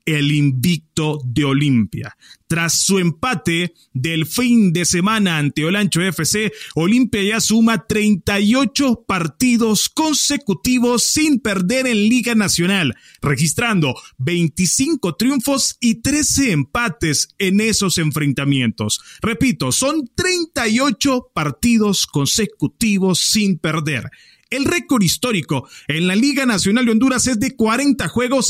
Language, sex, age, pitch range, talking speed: English, male, 30-49, 145-235 Hz, 115 wpm